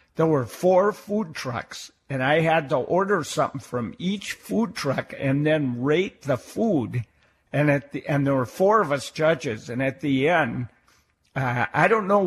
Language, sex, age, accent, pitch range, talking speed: English, male, 60-79, American, 130-170 Hz, 185 wpm